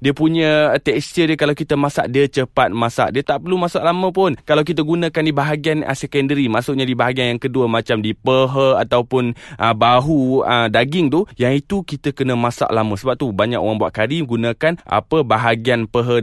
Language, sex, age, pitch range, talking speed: Malay, male, 20-39, 125-160 Hz, 190 wpm